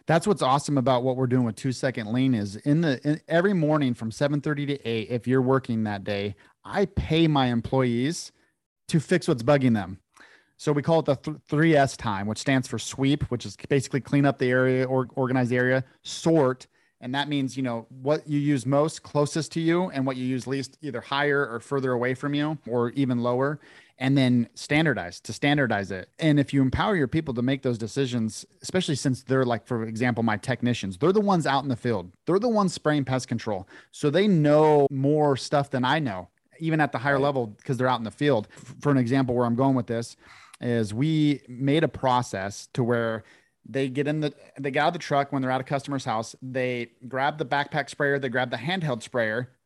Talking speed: 220 wpm